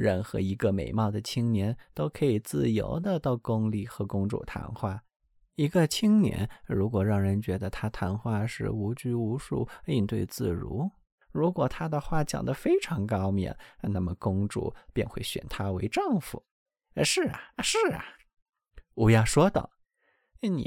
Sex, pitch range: male, 100-165 Hz